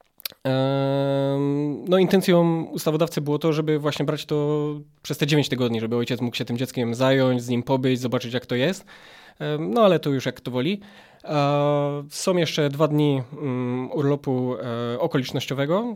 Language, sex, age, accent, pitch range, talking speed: Polish, male, 20-39, native, 130-170 Hz, 150 wpm